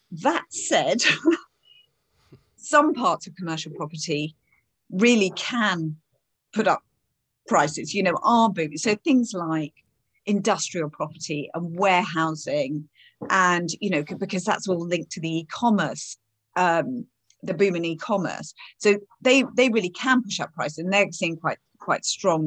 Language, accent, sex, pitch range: English, British, female, 160-210 Hz